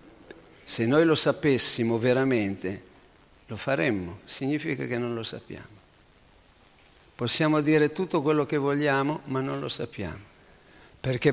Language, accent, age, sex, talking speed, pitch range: Italian, native, 50-69, male, 120 wpm, 110-140 Hz